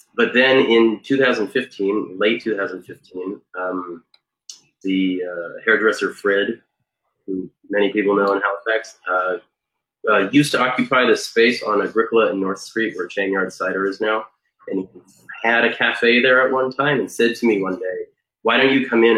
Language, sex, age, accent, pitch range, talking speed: English, male, 30-49, American, 95-130 Hz, 170 wpm